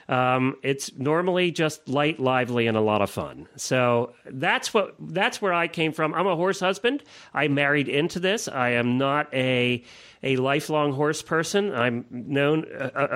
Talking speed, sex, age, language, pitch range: 175 wpm, male, 40-59, English, 125-160 Hz